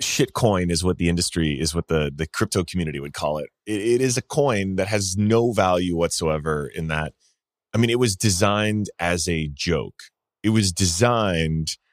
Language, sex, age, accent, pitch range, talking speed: English, male, 30-49, American, 80-105 Hz, 185 wpm